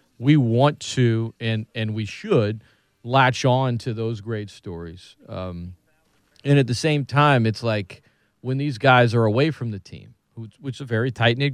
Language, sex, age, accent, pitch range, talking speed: English, male, 40-59, American, 90-115 Hz, 175 wpm